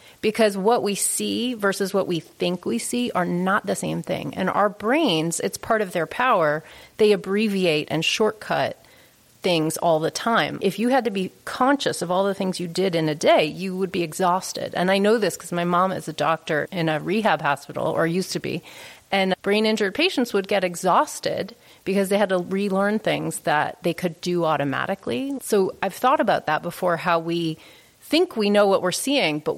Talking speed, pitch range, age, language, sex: 205 wpm, 165-210 Hz, 30-49, English, female